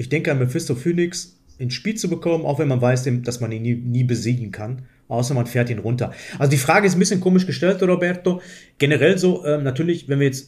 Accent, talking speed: German, 235 wpm